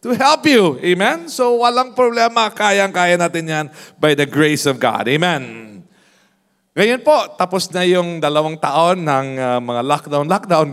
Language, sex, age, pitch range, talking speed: English, male, 40-59, 150-195 Hz, 160 wpm